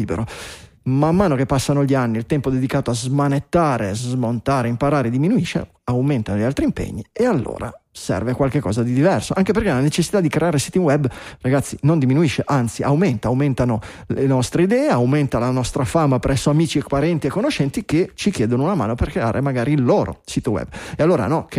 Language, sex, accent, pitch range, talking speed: Italian, male, native, 130-165 Hz, 185 wpm